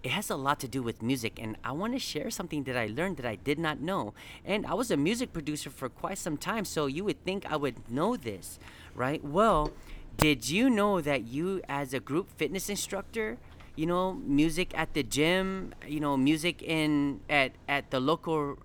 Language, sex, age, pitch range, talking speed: English, male, 30-49, 130-170 Hz, 210 wpm